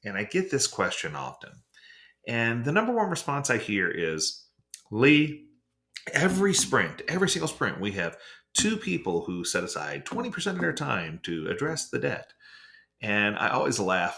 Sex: male